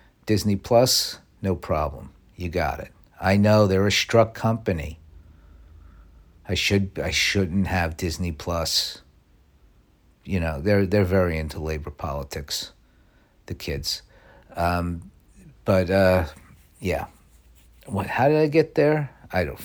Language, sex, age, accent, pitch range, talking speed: English, male, 50-69, American, 80-100 Hz, 130 wpm